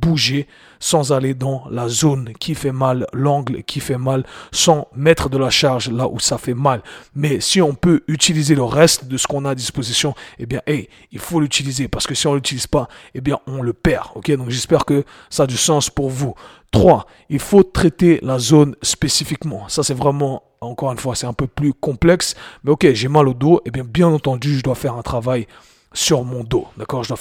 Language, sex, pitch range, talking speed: French, male, 125-150 Hz, 225 wpm